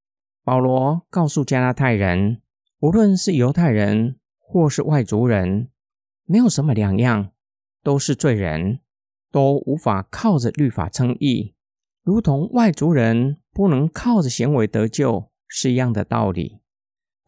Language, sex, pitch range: Chinese, male, 110-145 Hz